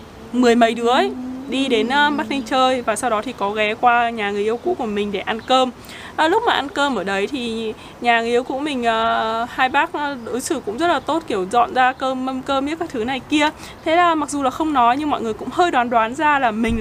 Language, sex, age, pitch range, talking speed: Vietnamese, female, 20-39, 220-290 Hz, 255 wpm